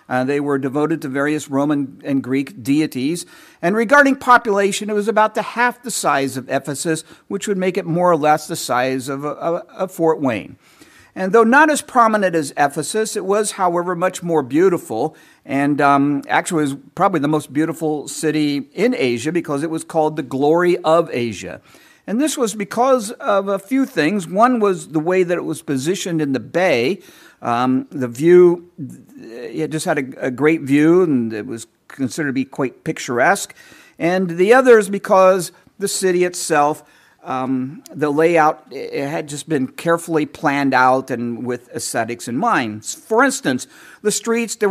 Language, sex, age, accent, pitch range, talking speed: English, male, 50-69, American, 140-190 Hz, 175 wpm